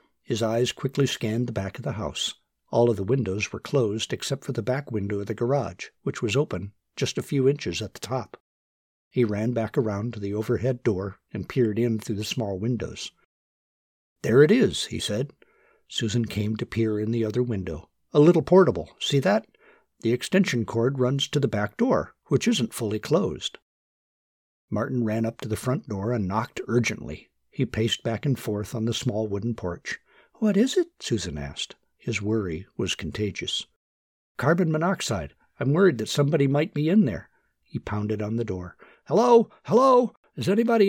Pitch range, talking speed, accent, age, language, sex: 105-145 Hz, 185 wpm, American, 60-79, English, male